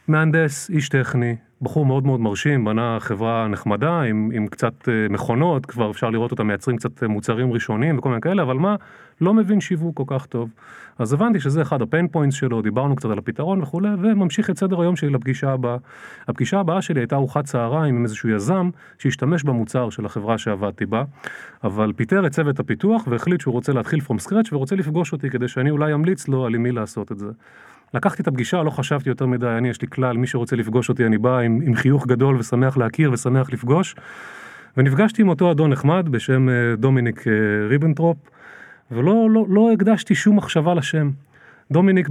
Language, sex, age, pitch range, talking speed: Hebrew, male, 30-49, 120-170 Hz, 175 wpm